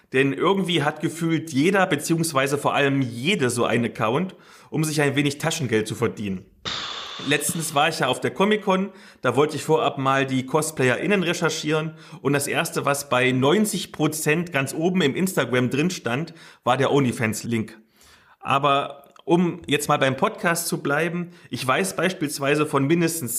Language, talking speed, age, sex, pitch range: German, 160 wpm, 30-49, male, 135-170 Hz